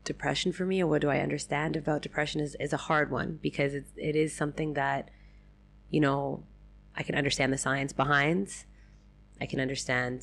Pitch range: 135-155 Hz